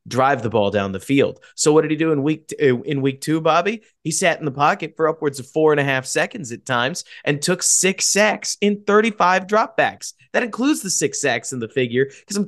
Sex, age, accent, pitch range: male, 30-49, American, 120-160 Hz